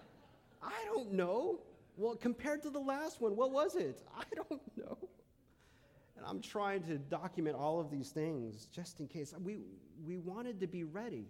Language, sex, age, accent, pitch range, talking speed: English, male, 40-59, American, 145-220 Hz, 175 wpm